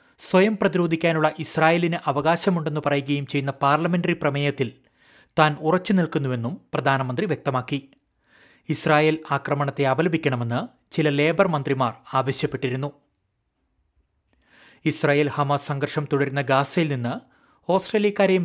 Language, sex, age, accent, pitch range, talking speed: Malayalam, male, 30-49, native, 135-160 Hz, 85 wpm